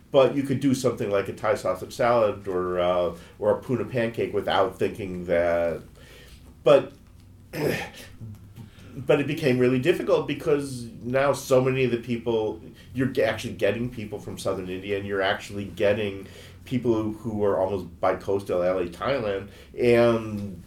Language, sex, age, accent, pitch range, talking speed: English, male, 40-59, American, 90-115 Hz, 155 wpm